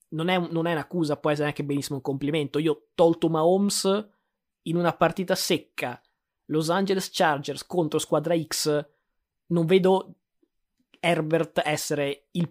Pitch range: 145-170 Hz